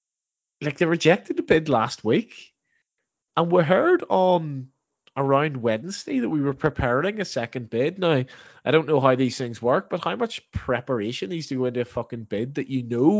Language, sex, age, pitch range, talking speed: English, male, 20-39, 115-145 Hz, 190 wpm